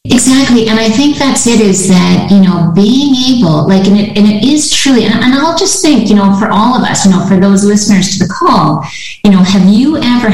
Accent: American